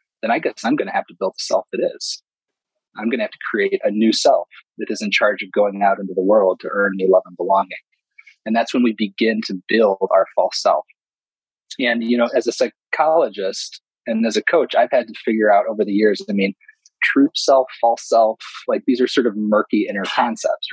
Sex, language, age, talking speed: male, English, 30-49, 230 wpm